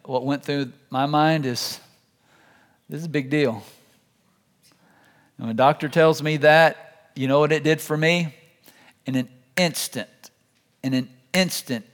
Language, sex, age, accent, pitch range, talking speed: English, male, 50-69, American, 125-155 Hz, 150 wpm